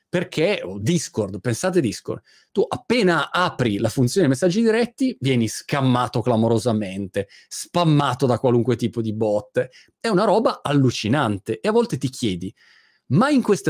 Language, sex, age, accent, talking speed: Italian, male, 40-59, native, 145 wpm